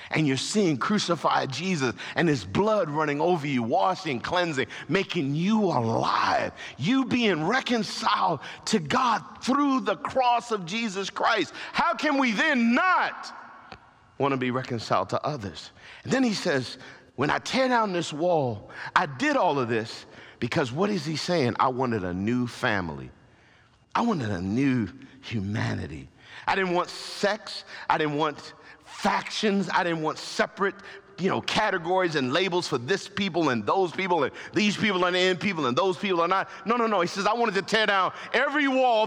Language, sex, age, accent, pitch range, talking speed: English, male, 50-69, American, 130-215 Hz, 175 wpm